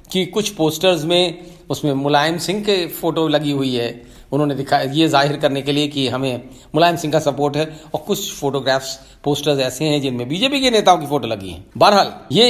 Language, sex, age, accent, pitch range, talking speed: Hindi, male, 40-59, native, 140-185 Hz, 205 wpm